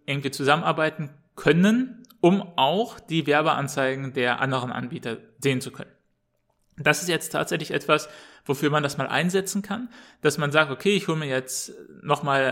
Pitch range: 135-170 Hz